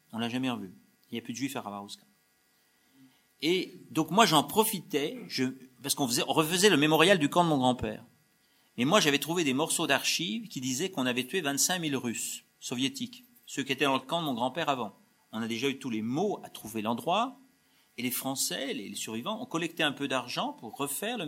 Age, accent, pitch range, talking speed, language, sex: 40-59, French, 125-200 Hz, 225 wpm, French, male